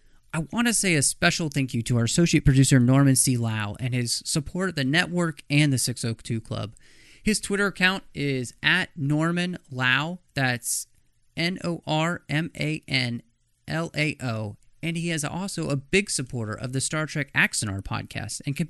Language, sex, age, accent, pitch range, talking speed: English, male, 30-49, American, 120-165 Hz, 155 wpm